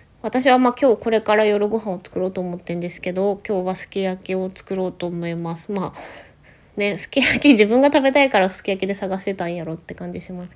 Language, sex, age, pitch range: Japanese, female, 20-39, 180-230 Hz